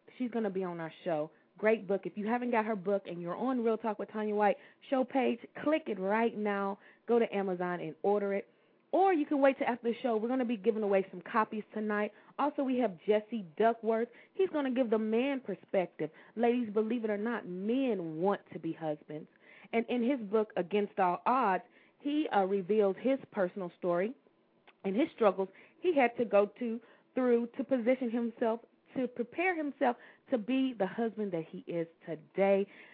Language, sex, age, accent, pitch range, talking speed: English, female, 30-49, American, 195-245 Hz, 200 wpm